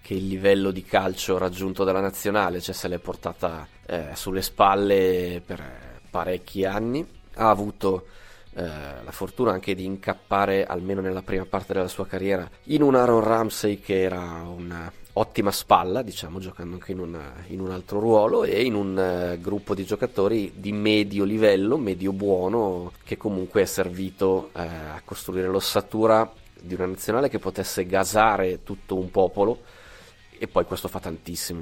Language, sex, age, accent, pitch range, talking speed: Italian, male, 30-49, native, 90-100 Hz, 160 wpm